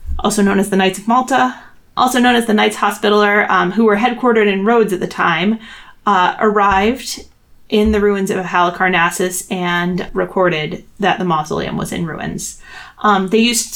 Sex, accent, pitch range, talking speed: female, American, 190-230 Hz, 175 wpm